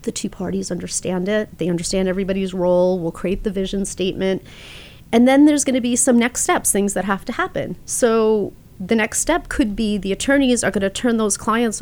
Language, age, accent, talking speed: English, 30-49, American, 215 wpm